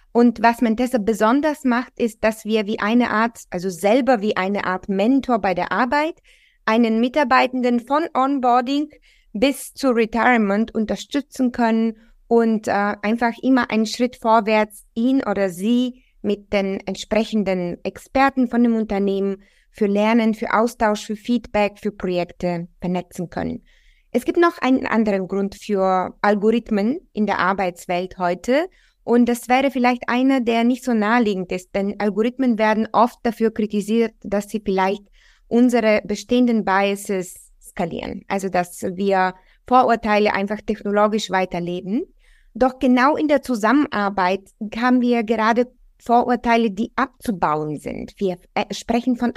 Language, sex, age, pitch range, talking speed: German, female, 20-39, 200-245 Hz, 140 wpm